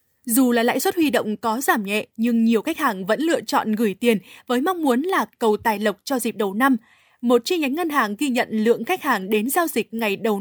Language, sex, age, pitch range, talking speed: Vietnamese, female, 20-39, 225-275 Hz, 255 wpm